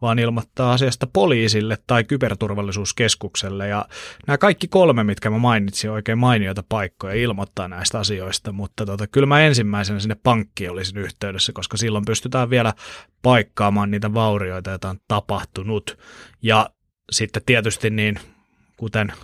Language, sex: Finnish, male